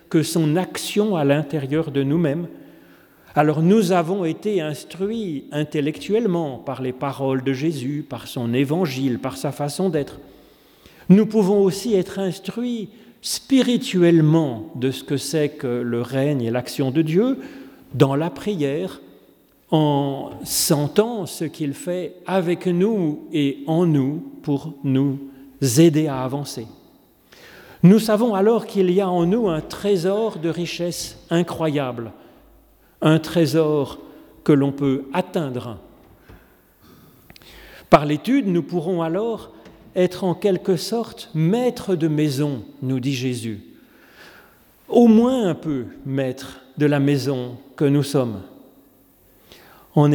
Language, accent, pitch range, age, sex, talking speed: French, French, 140-190 Hz, 40-59, male, 125 wpm